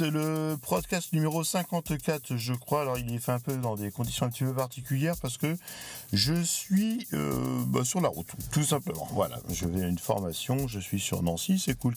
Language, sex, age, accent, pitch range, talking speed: French, male, 50-69, French, 90-130 Hz, 210 wpm